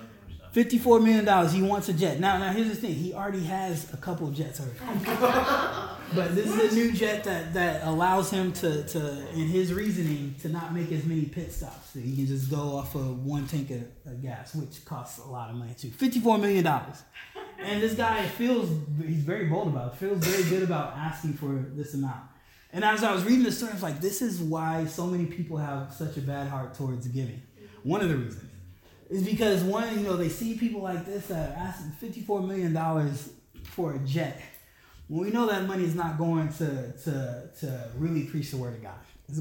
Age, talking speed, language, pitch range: 20-39, 215 wpm, English, 135-190 Hz